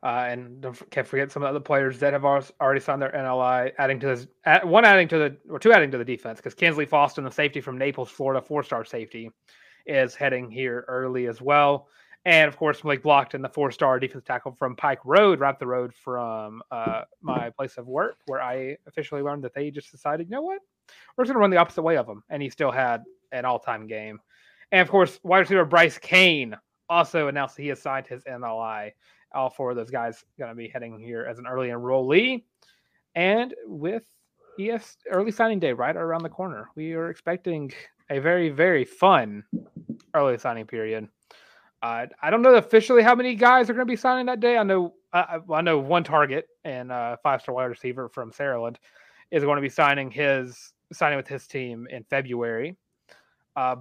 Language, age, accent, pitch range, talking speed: English, 30-49, American, 125-170 Hz, 215 wpm